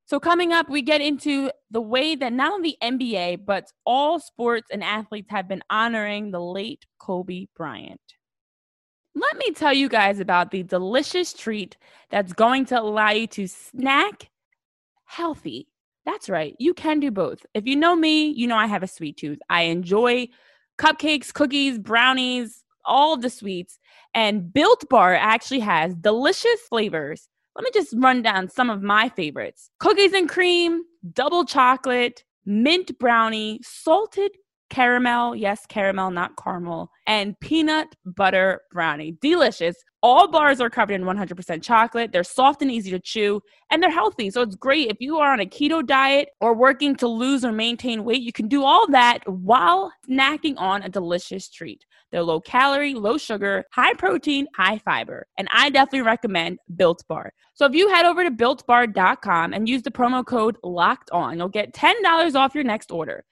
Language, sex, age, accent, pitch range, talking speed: English, female, 20-39, American, 200-290 Hz, 165 wpm